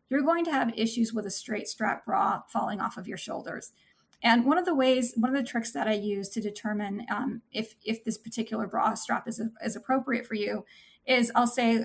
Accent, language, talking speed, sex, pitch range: American, English, 230 wpm, female, 225-255 Hz